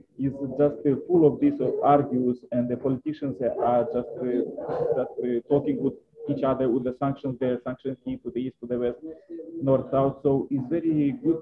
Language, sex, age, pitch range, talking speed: English, male, 20-39, 125-145 Hz, 195 wpm